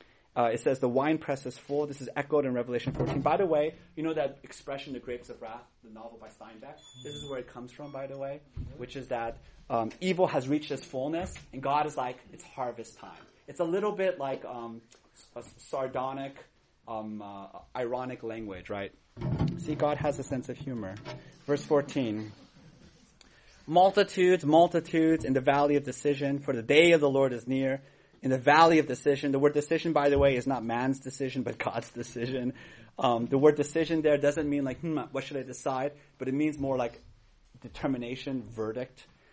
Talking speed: 195 wpm